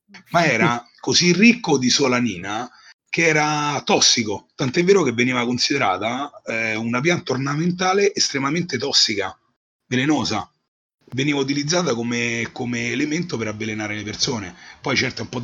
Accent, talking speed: native, 135 wpm